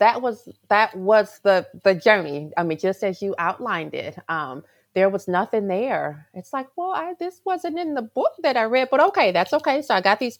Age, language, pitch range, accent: 30-49, English, 190-250 Hz, American